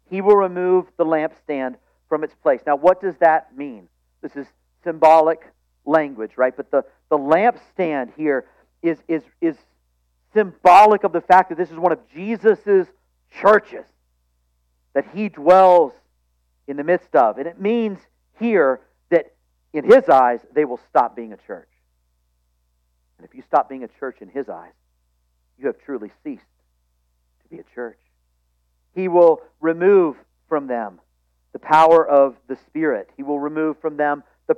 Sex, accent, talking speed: male, American, 160 wpm